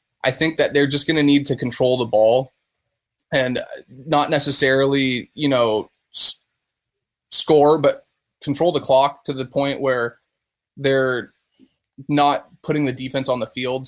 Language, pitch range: English, 125-140 Hz